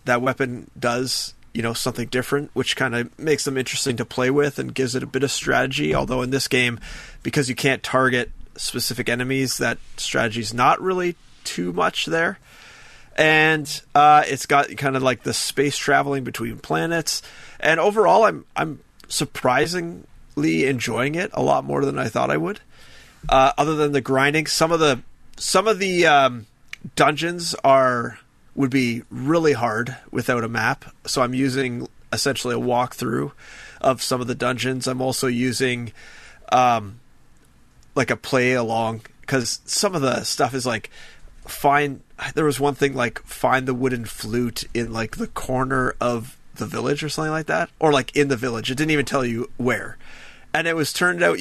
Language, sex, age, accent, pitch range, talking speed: English, male, 30-49, American, 120-145 Hz, 175 wpm